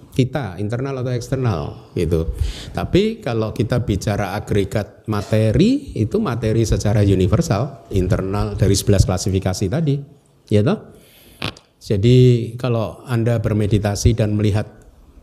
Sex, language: male, Indonesian